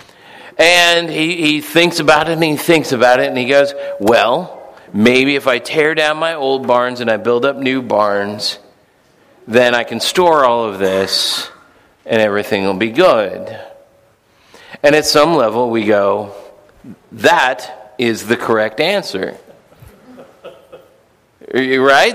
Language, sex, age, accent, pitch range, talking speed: English, male, 40-59, American, 130-175 Hz, 145 wpm